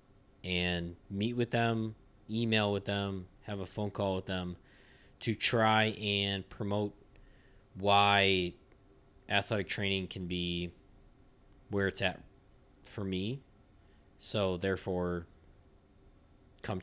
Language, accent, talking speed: English, American, 105 wpm